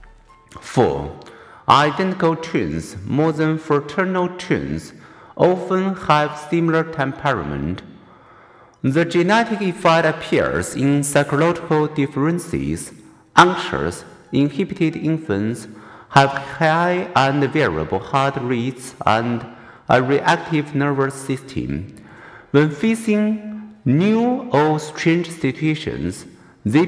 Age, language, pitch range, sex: 50-69, Chinese, 135-170 Hz, male